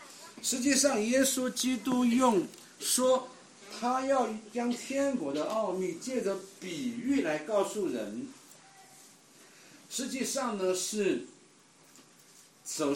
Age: 50-69